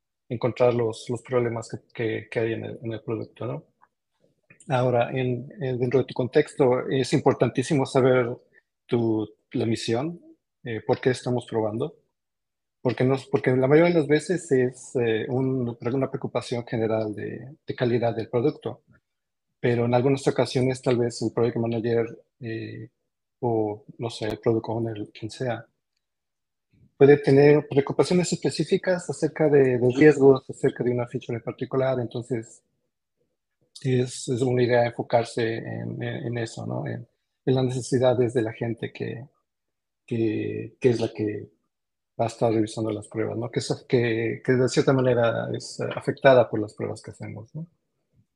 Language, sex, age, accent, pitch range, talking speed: Spanish, male, 40-59, Mexican, 115-135 Hz, 160 wpm